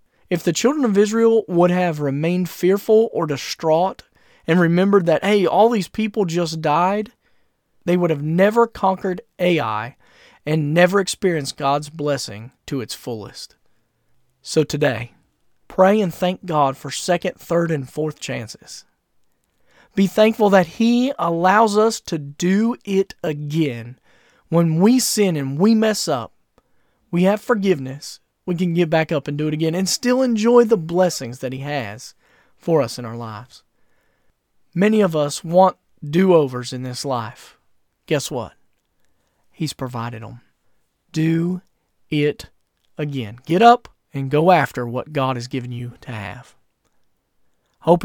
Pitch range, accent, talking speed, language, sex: 140-190 Hz, American, 145 wpm, English, male